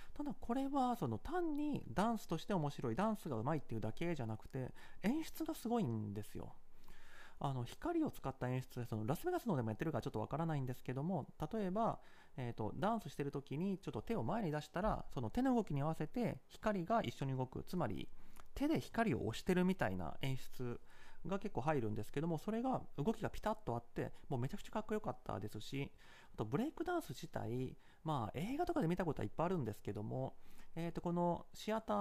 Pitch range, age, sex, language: 130-215 Hz, 30-49, male, Japanese